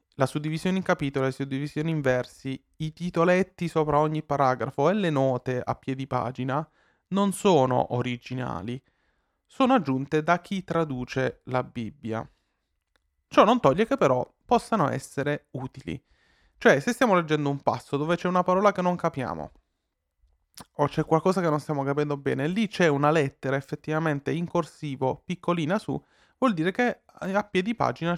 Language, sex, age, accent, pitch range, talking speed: Italian, male, 30-49, native, 130-175 Hz, 155 wpm